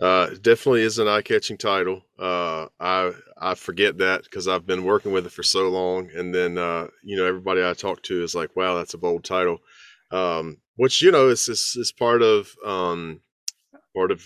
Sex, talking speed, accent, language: male, 205 wpm, American, English